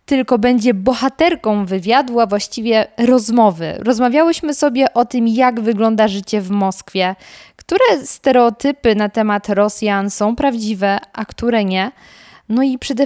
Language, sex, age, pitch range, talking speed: Polish, female, 20-39, 210-255 Hz, 135 wpm